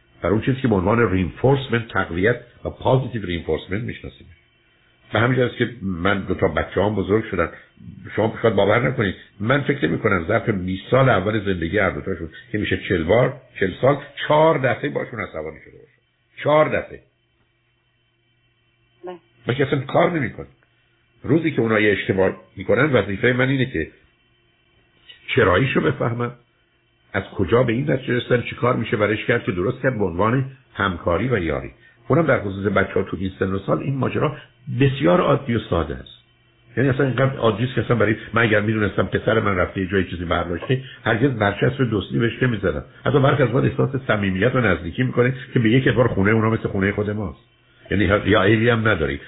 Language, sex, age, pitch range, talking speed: Persian, male, 60-79, 100-125 Hz, 165 wpm